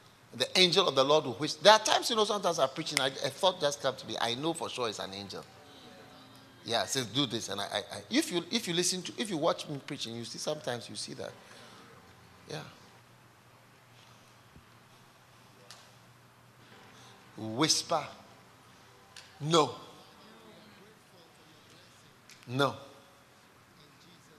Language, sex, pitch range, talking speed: English, male, 115-155 Hz, 140 wpm